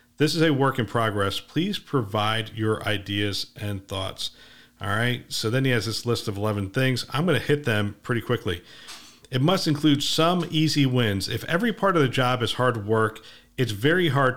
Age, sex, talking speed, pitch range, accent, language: 50-69, male, 195 wpm, 105-135 Hz, American, English